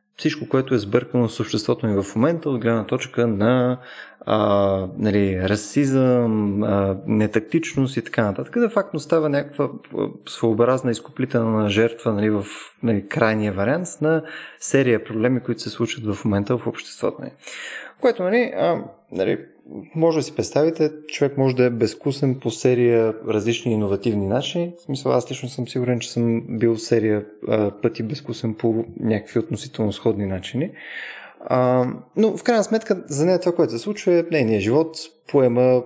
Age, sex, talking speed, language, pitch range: 20-39, male, 165 wpm, Bulgarian, 110-155 Hz